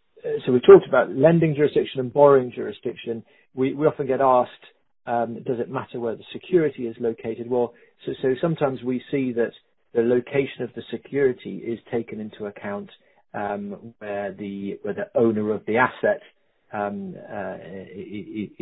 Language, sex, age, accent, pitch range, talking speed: English, male, 40-59, British, 100-130 Hz, 160 wpm